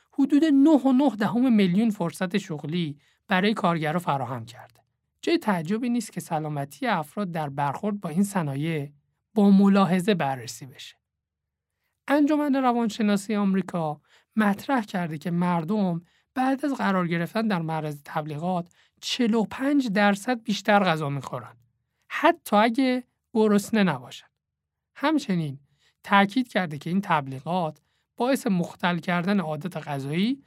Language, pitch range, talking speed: Persian, 155-225 Hz, 120 wpm